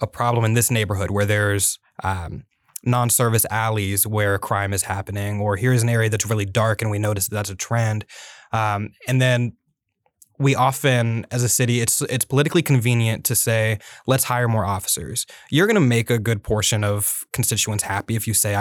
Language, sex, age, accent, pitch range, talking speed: English, male, 20-39, American, 105-125 Hz, 190 wpm